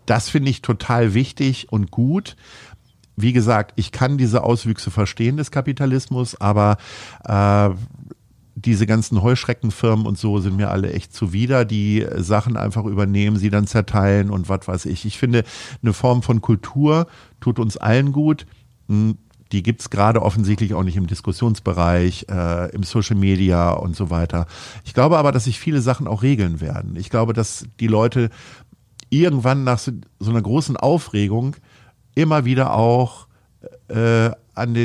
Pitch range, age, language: 105-130 Hz, 50-69, German